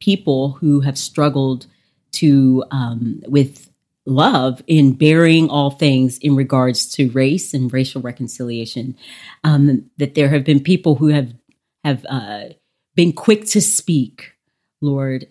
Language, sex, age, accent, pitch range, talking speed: English, female, 40-59, American, 135-170 Hz, 135 wpm